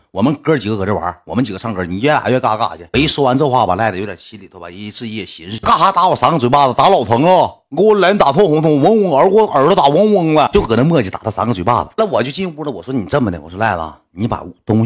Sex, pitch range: male, 90-120 Hz